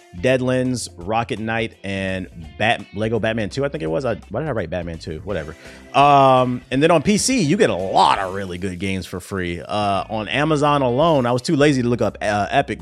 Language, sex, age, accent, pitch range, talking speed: English, male, 30-49, American, 100-135 Hz, 225 wpm